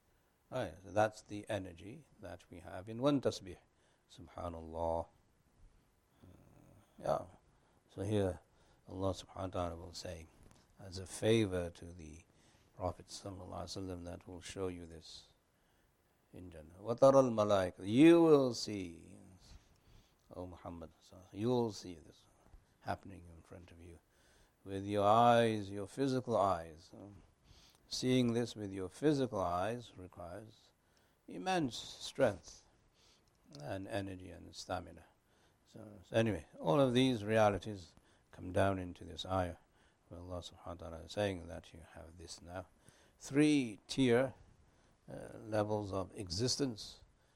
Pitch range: 85-110 Hz